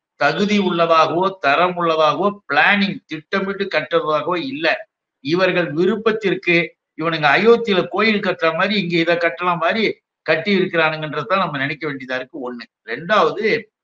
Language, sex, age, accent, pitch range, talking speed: Tamil, male, 60-79, native, 150-195 Hz, 115 wpm